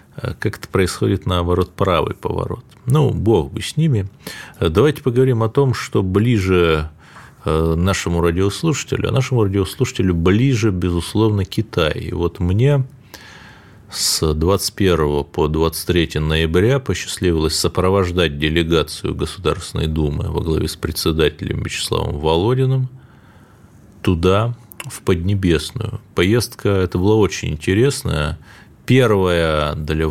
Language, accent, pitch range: Russian, native, 80-110 Hz